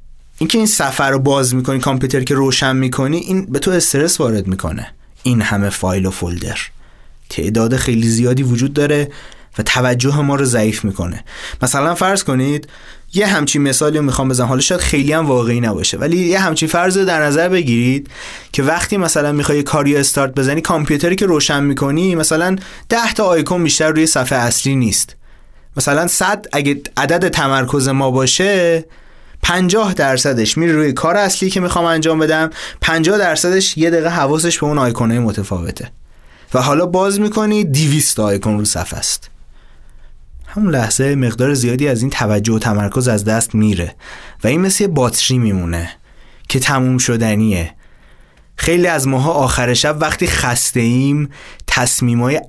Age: 20-39